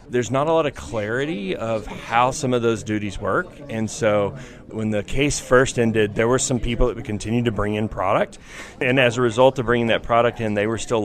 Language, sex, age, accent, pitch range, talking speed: English, male, 30-49, American, 95-115 Hz, 235 wpm